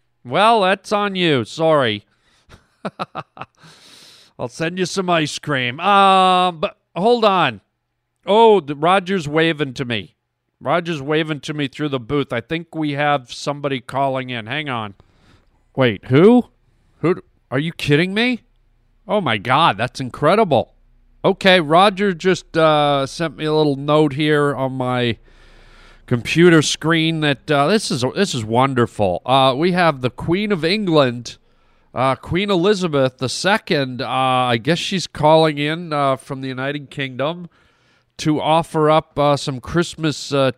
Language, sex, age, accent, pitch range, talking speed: English, male, 40-59, American, 125-165 Hz, 150 wpm